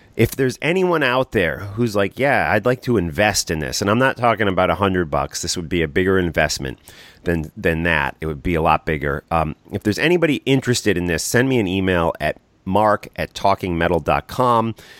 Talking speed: 210 wpm